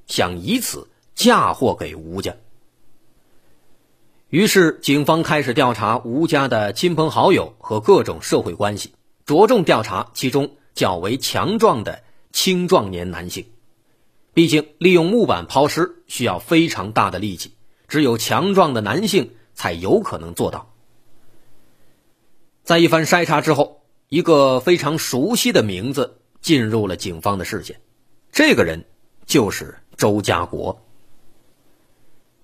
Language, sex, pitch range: Chinese, male, 100-165 Hz